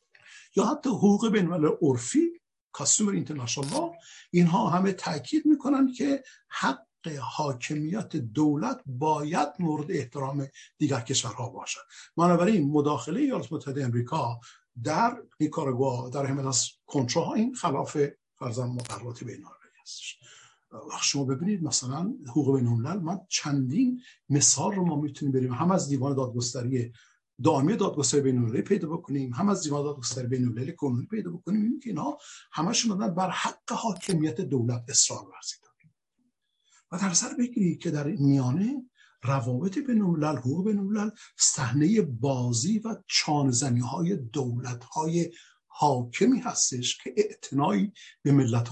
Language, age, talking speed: Persian, 60-79, 125 wpm